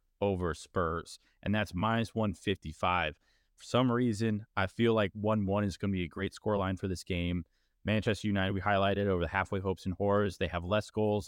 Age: 20-39